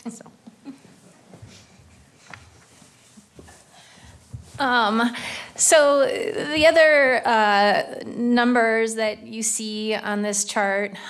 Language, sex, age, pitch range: English, female, 30-49, 195-220 Hz